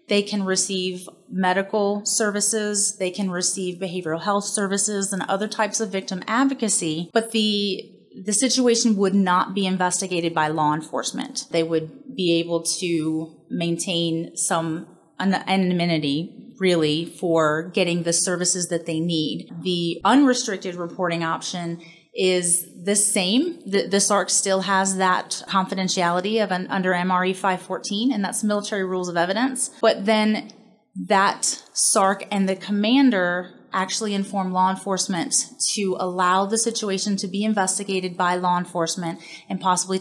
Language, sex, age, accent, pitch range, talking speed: English, female, 30-49, American, 175-205 Hz, 140 wpm